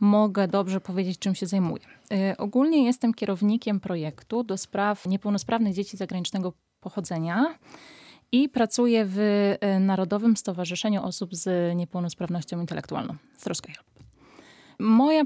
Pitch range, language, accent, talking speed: 190-220 Hz, Polish, native, 110 wpm